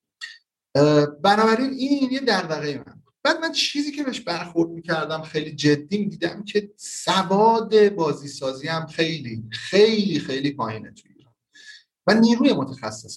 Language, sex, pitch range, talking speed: Persian, male, 140-190 Hz, 130 wpm